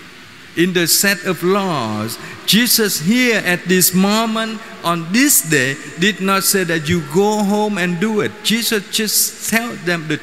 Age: 50-69